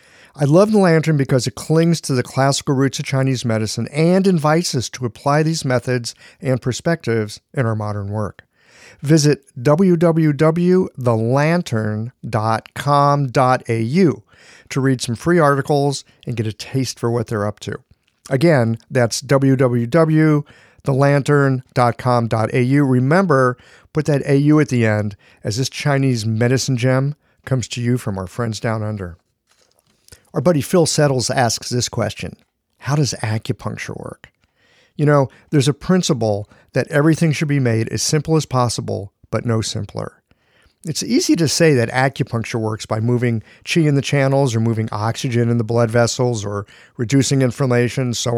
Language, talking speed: English, 145 wpm